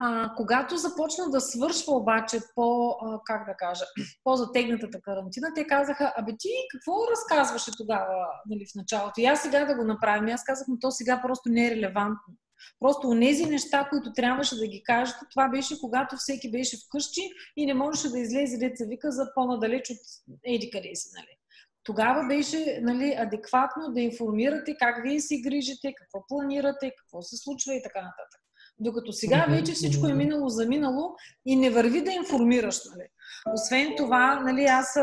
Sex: female